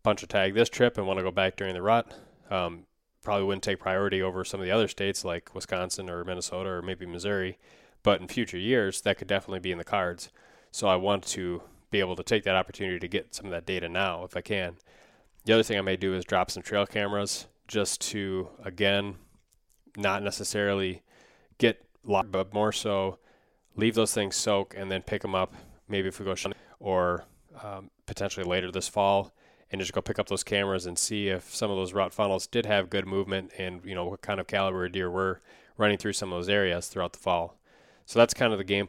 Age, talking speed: 20-39, 220 wpm